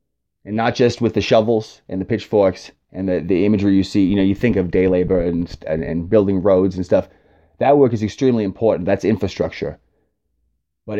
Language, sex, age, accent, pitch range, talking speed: English, male, 30-49, American, 95-110 Hz, 200 wpm